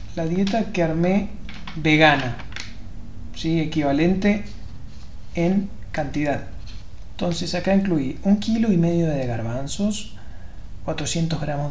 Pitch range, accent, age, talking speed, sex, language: 135-185 Hz, Argentinian, 30-49, 95 wpm, male, Spanish